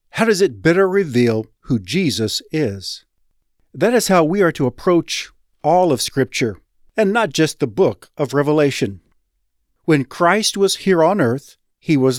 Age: 50-69